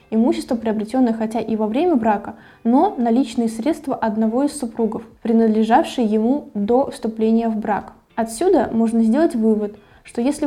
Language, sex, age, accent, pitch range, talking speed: Russian, female, 20-39, native, 220-260 Hz, 145 wpm